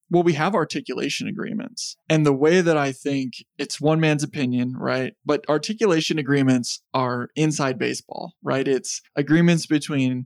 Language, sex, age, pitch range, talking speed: English, male, 20-39, 135-160 Hz, 150 wpm